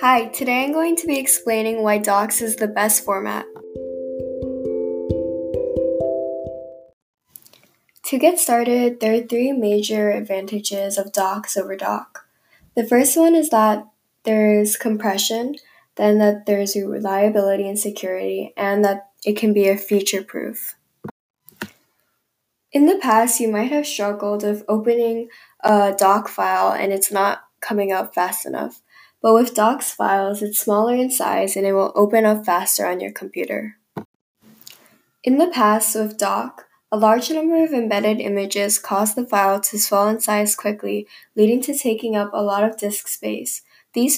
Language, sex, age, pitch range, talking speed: English, female, 10-29, 200-225 Hz, 150 wpm